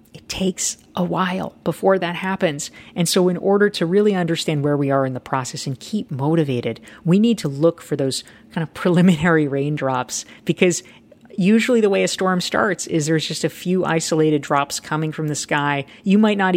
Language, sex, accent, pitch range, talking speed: English, female, American, 145-195 Hz, 195 wpm